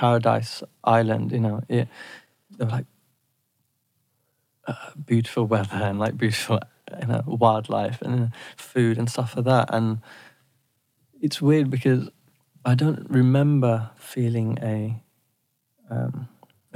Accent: British